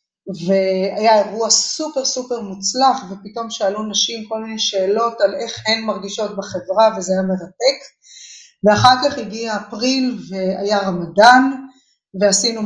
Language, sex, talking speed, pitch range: Hebrew, female, 125 wpm, 210-320 Hz